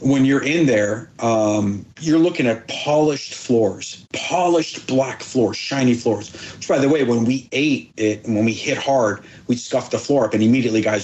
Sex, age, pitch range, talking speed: male, 40-59, 125-175 Hz, 195 wpm